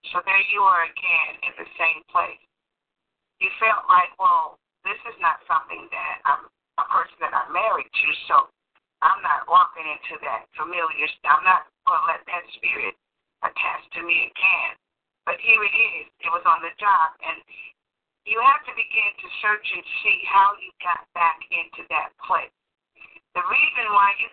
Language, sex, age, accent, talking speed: English, female, 50-69, American, 180 wpm